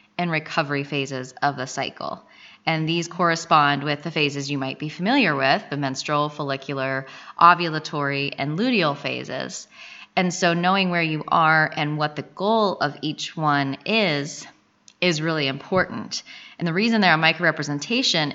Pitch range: 145-175 Hz